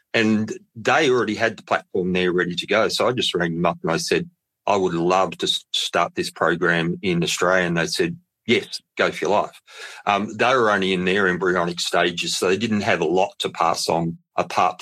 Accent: Australian